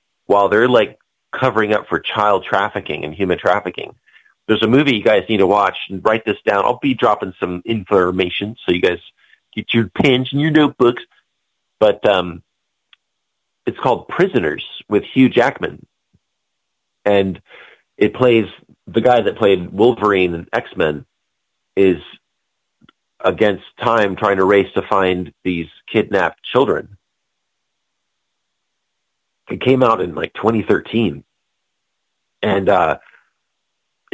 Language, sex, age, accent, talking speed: English, male, 40-59, American, 130 wpm